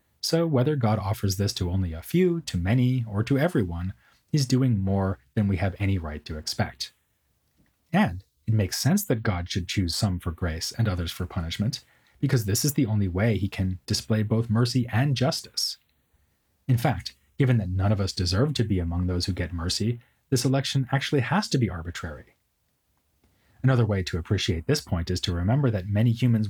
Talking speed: 195 wpm